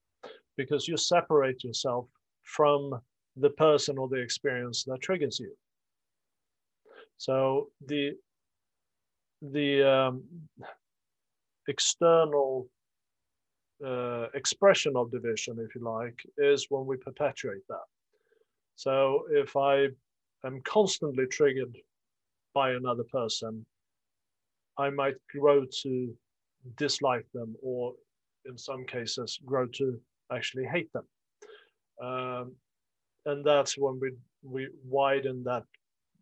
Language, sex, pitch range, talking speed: English, male, 125-145 Hz, 105 wpm